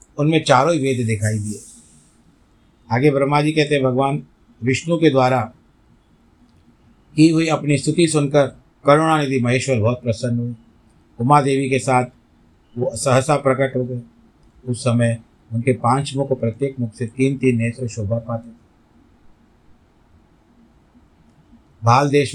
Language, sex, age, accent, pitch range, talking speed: Hindi, male, 50-69, native, 115-135 Hz, 135 wpm